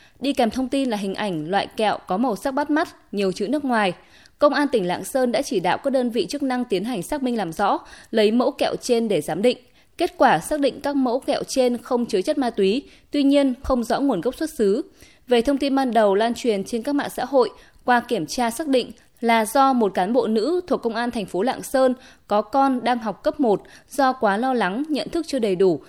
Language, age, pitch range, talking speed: Vietnamese, 20-39, 195-265 Hz, 255 wpm